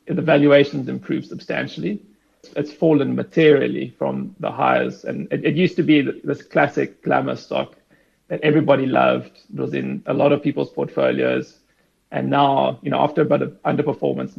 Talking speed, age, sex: 170 wpm, 30-49, male